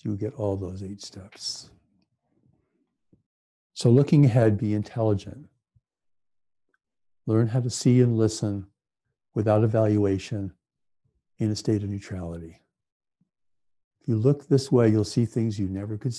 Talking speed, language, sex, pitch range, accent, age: 130 wpm, English, male, 100-115 Hz, American, 60-79